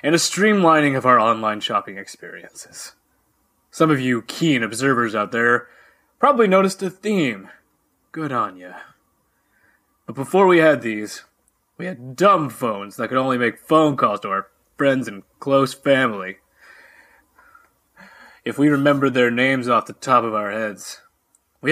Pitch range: 125-185 Hz